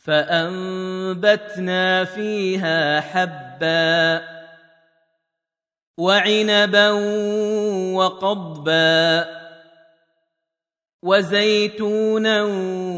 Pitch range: 155-185 Hz